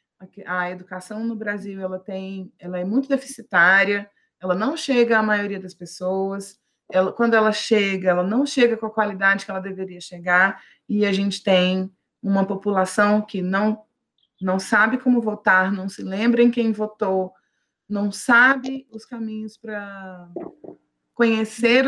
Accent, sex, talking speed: Brazilian, female, 145 wpm